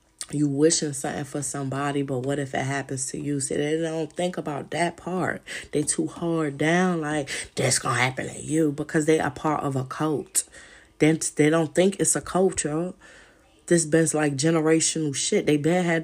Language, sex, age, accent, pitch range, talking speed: English, female, 20-39, American, 130-165 Hz, 195 wpm